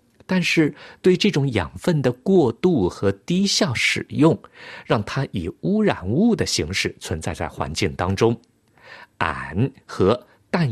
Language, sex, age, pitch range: Chinese, male, 50-69, 100-165 Hz